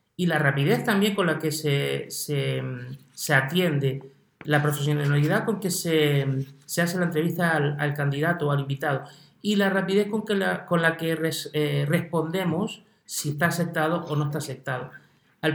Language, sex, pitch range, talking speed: Spanish, male, 145-180 Hz, 180 wpm